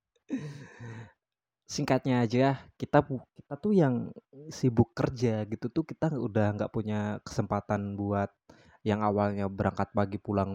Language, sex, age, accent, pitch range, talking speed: Indonesian, male, 20-39, native, 105-135 Hz, 120 wpm